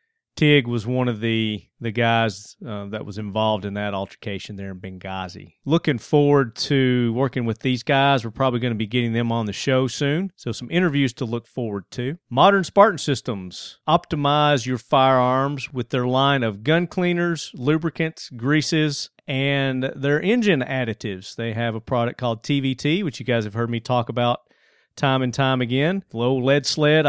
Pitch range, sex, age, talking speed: 115-140 Hz, male, 40-59, 180 wpm